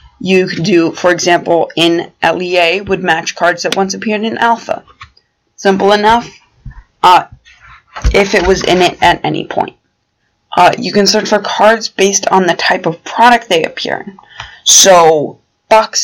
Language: English